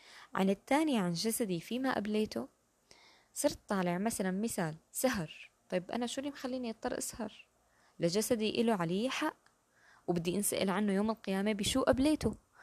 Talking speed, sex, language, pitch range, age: 140 wpm, female, Arabic, 175-220 Hz, 20-39